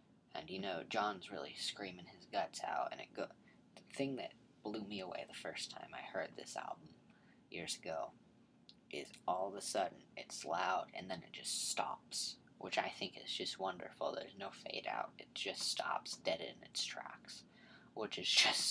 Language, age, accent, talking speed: English, 20-39, American, 185 wpm